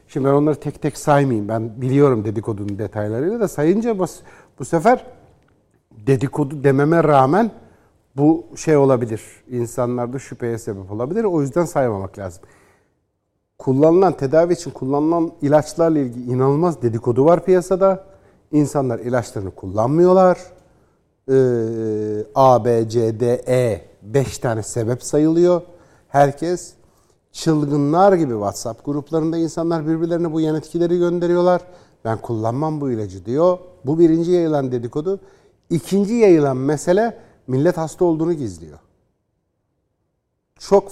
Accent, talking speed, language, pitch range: native, 115 wpm, Turkish, 120-175 Hz